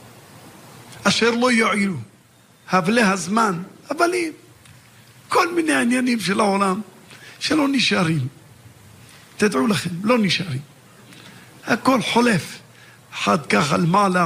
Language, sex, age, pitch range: Hebrew, male, 50-69, 140-205 Hz